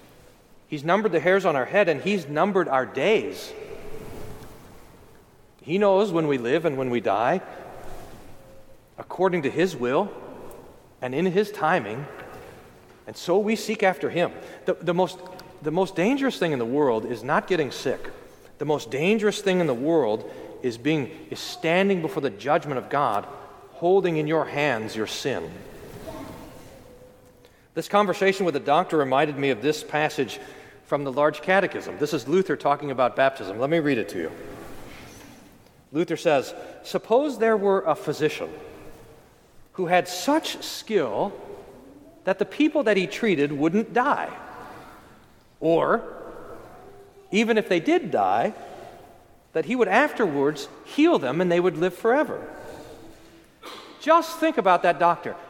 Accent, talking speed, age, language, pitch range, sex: American, 150 wpm, 40-59, English, 150-205 Hz, male